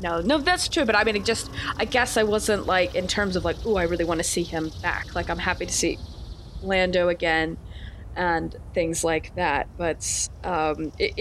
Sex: female